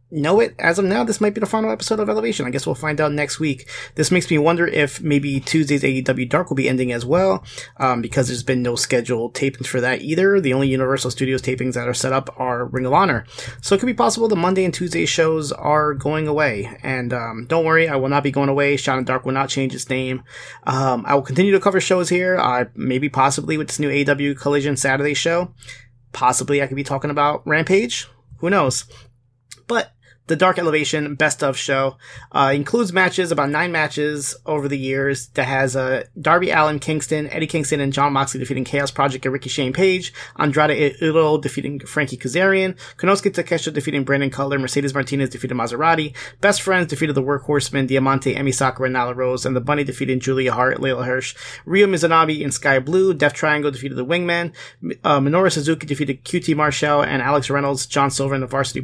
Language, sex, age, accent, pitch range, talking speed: English, male, 20-39, American, 130-155 Hz, 210 wpm